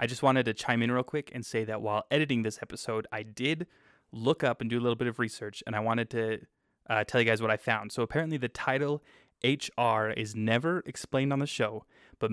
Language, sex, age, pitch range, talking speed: English, male, 20-39, 110-130 Hz, 240 wpm